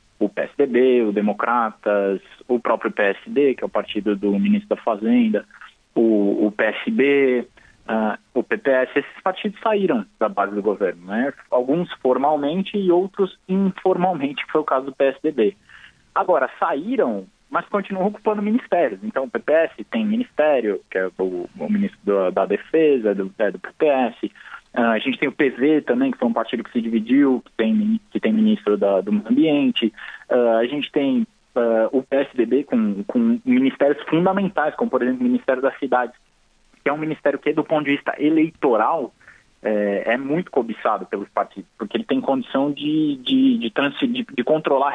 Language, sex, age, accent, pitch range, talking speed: Portuguese, male, 20-39, Brazilian, 120-195 Hz, 170 wpm